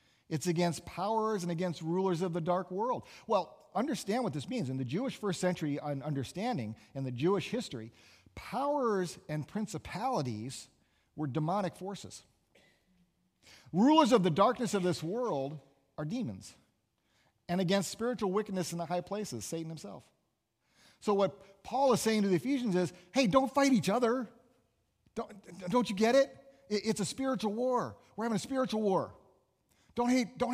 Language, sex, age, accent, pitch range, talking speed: English, male, 40-59, American, 150-230 Hz, 155 wpm